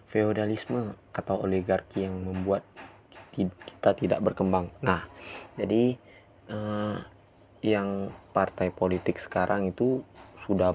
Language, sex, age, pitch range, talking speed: Indonesian, male, 20-39, 95-105 Hz, 95 wpm